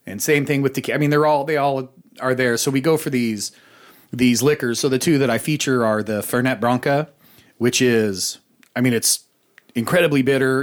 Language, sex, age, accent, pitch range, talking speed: English, male, 30-49, American, 115-140 Hz, 210 wpm